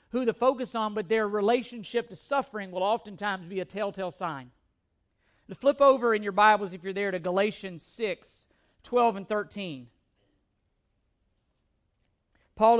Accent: American